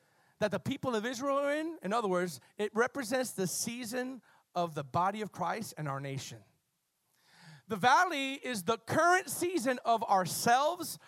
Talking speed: 160 wpm